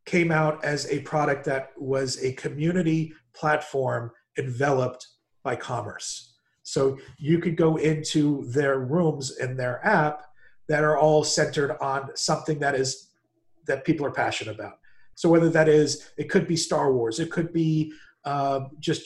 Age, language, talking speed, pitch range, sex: 40-59, English, 155 wpm, 135-160 Hz, male